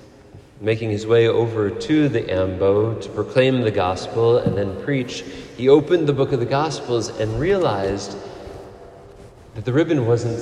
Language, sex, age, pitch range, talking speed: English, male, 40-59, 105-140 Hz, 155 wpm